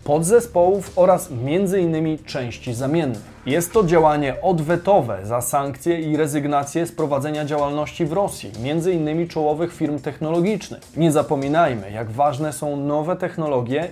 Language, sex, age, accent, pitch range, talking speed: Polish, male, 20-39, native, 145-185 Hz, 130 wpm